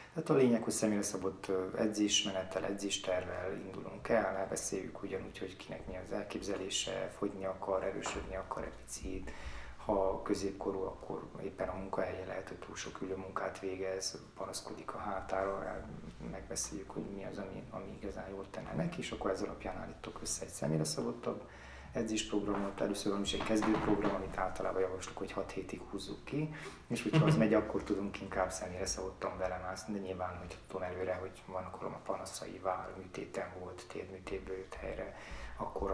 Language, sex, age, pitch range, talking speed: Hungarian, male, 30-49, 95-100 Hz, 160 wpm